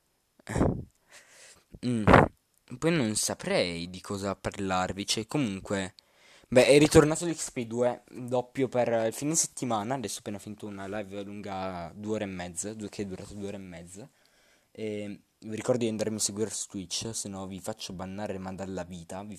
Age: 20-39